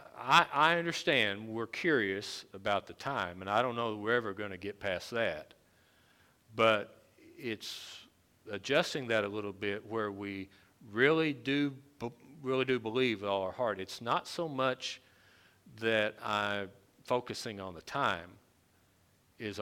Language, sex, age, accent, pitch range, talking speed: English, male, 50-69, American, 95-120 Hz, 145 wpm